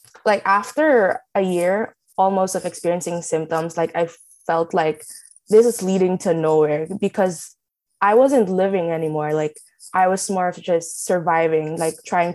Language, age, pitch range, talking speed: English, 20-39, 170-215 Hz, 150 wpm